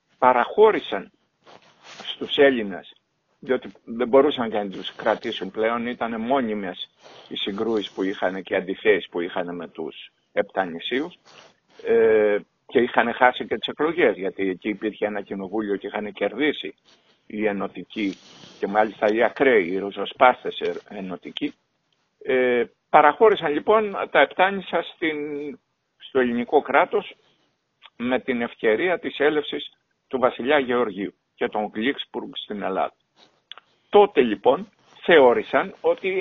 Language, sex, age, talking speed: Greek, male, 50-69, 125 wpm